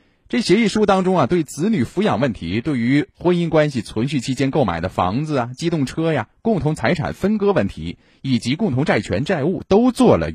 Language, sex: Chinese, male